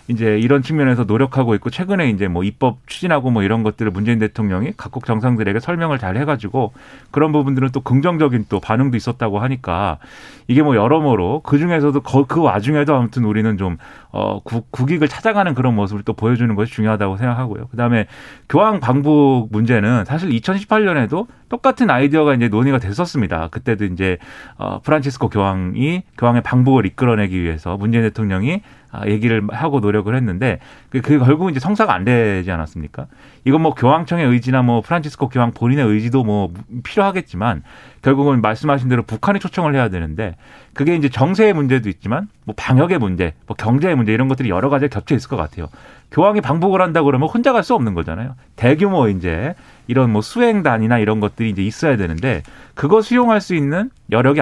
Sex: male